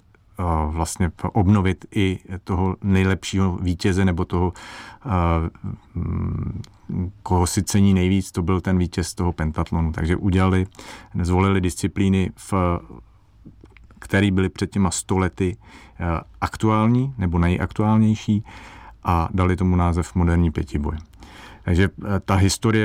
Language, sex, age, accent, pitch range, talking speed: Czech, male, 40-59, native, 85-100 Hz, 100 wpm